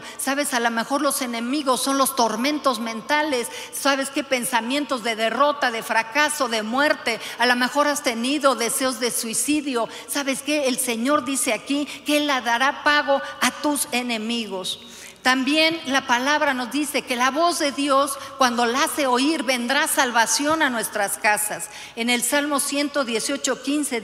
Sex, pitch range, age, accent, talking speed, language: female, 250-300 Hz, 50-69, Mexican, 160 wpm, Spanish